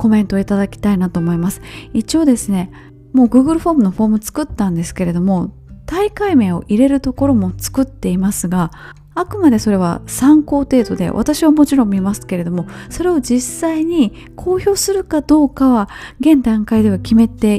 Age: 20-39